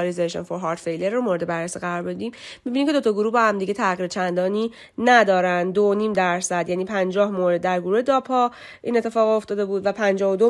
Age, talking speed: 30-49, 190 wpm